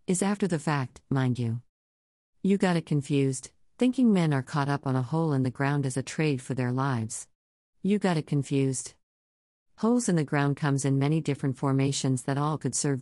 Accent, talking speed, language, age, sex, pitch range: American, 205 wpm, English, 50-69, female, 130-165 Hz